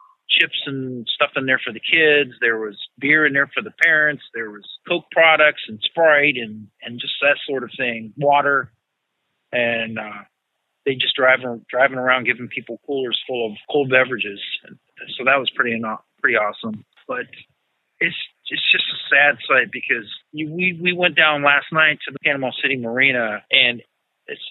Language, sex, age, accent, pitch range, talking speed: English, male, 40-59, American, 120-145 Hz, 180 wpm